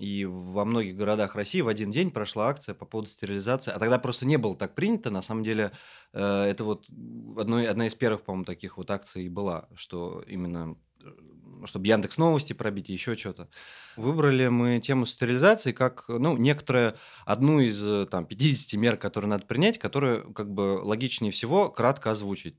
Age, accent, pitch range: 30-49, native, 95-130 Hz